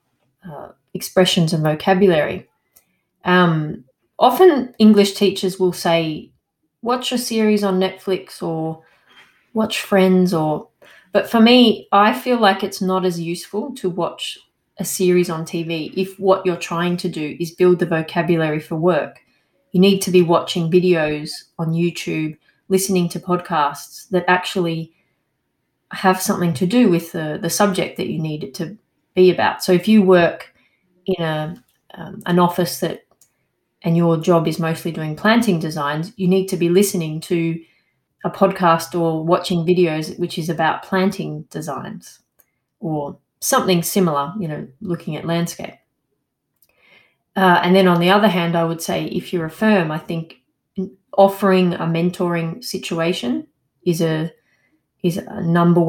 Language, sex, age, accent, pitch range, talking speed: English, female, 30-49, Australian, 165-190 Hz, 150 wpm